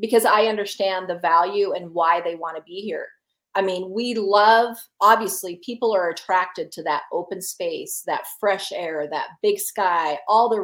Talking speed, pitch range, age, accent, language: 180 wpm, 185-235 Hz, 40-59, American, English